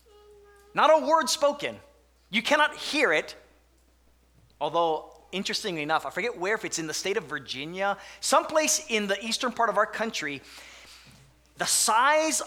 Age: 30-49